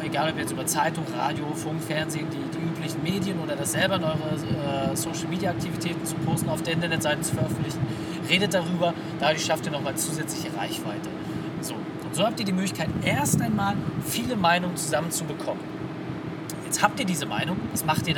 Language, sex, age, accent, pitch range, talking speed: German, male, 30-49, German, 155-175 Hz, 185 wpm